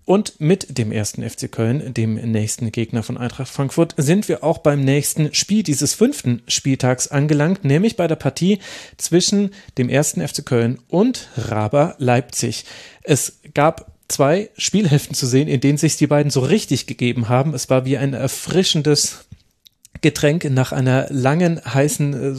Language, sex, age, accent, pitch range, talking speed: German, male, 30-49, German, 125-165 Hz, 160 wpm